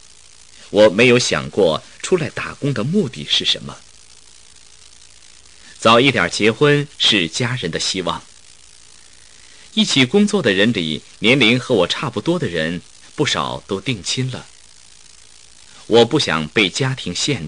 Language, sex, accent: Chinese, male, native